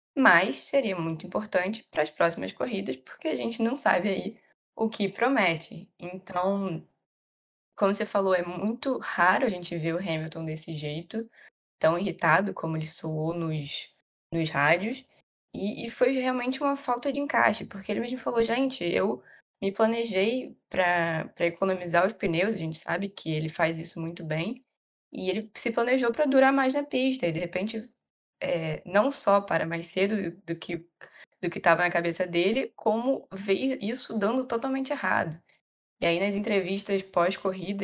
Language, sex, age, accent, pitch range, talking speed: Portuguese, female, 10-29, Brazilian, 170-225 Hz, 170 wpm